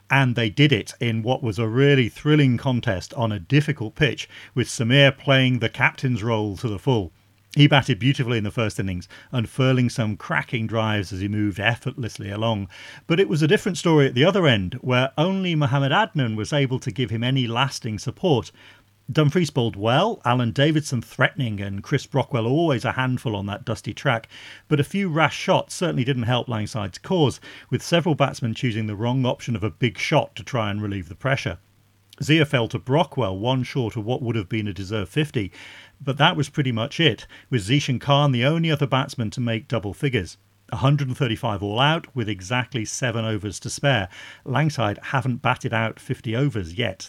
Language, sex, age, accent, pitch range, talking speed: English, male, 40-59, British, 110-140 Hz, 195 wpm